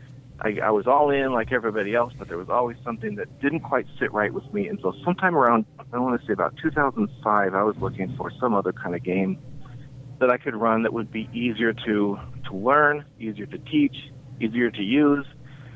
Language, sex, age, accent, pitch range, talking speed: English, male, 30-49, American, 105-135 Hz, 215 wpm